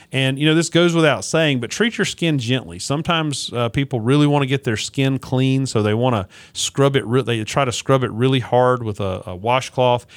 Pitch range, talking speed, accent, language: 115-140 Hz, 235 wpm, American, English